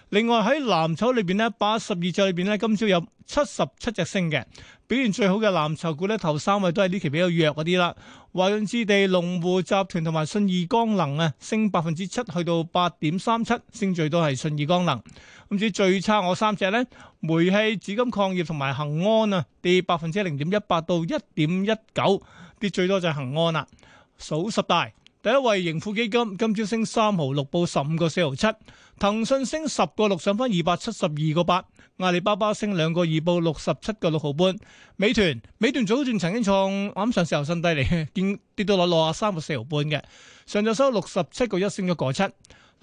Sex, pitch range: male, 170-215 Hz